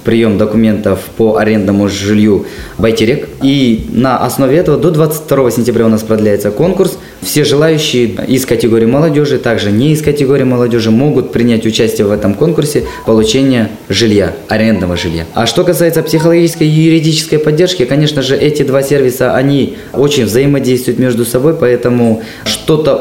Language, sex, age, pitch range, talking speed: Russian, male, 20-39, 110-145 Hz, 145 wpm